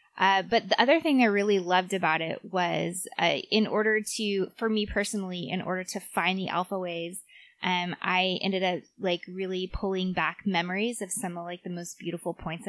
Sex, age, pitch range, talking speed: female, 20-39, 180-215 Hz, 200 wpm